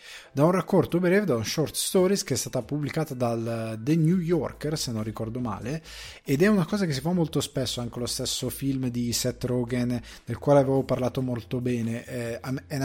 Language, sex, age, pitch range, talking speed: Italian, male, 20-39, 115-140 Hz, 205 wpm